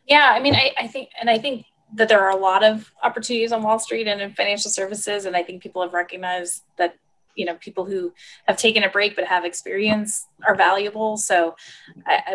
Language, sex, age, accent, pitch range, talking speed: English, female, 20-39, American, 180-215 Hz, 220 wpm